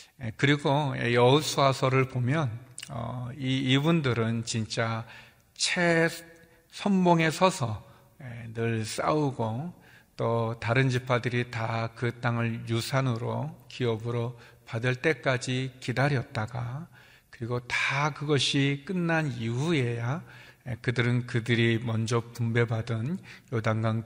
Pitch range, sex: 115-135 Hz, male